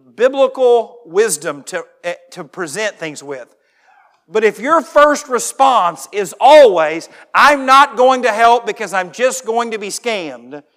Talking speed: 150 wpm